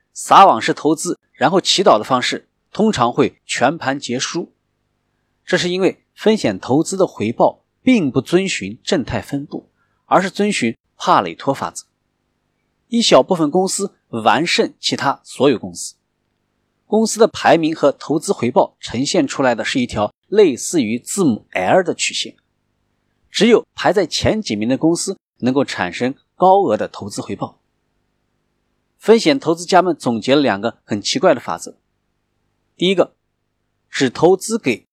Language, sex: Chinese, male